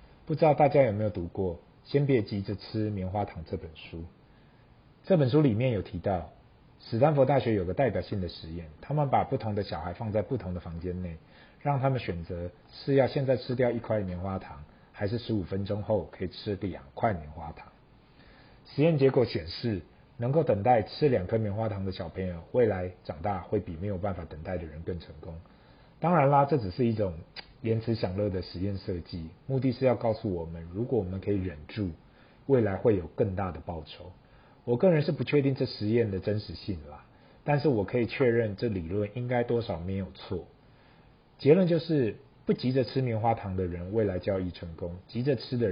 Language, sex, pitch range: Chinese, male, 90-125 Hz